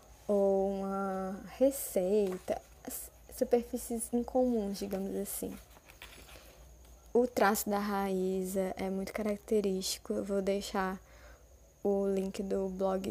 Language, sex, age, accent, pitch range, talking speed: Portuguese, female, 10-29, Brazilian, 190-220 Hz, 95 wpm